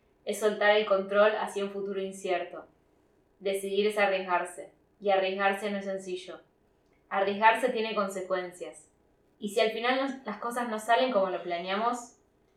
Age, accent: 20-39, Argentinian